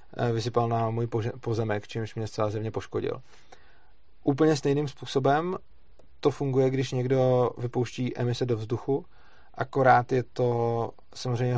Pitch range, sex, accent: 110-125 Hz, male, native